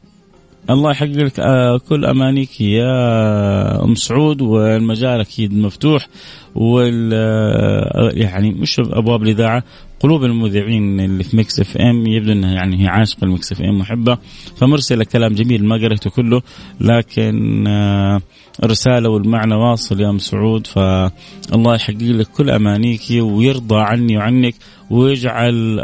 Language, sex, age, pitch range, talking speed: Arabic, male, 30-49, 105-130 Hz, 130 wpm